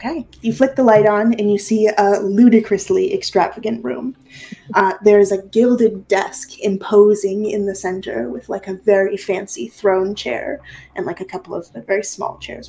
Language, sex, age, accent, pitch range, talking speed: English, female, 20-39, American, 195-225 Hz, 185 wpm